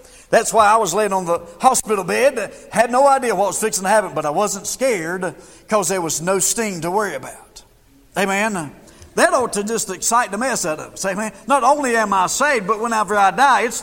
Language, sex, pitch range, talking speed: English, male, 200-245 Hz, 220 wpm